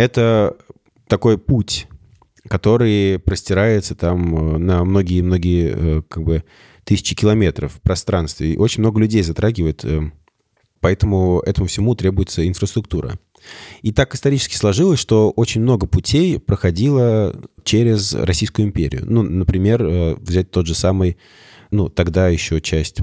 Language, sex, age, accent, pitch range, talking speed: Russian, male, 20-39, native, 85-110 Hz, 120 wpm